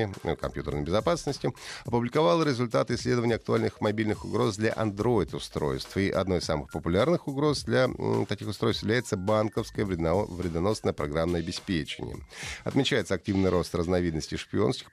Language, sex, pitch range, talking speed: Russian, male, 85-120 Hz, 125 wpm